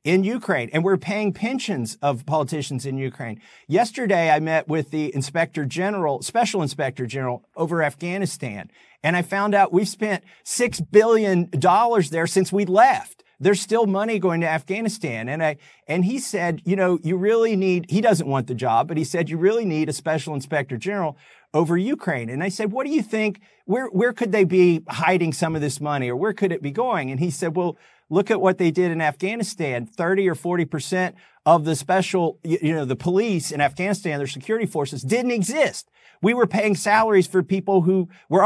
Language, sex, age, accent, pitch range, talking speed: English, male, 50-69, American, 155-210 Hz, 200 wpm